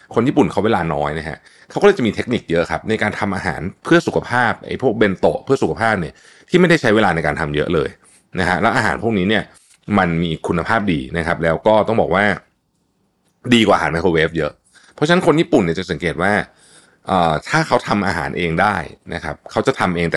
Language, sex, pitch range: Thai, male, 80-110 Hz